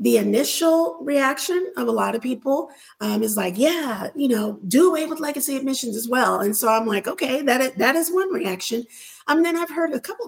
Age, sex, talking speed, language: 40-59, female, 215 wpm, English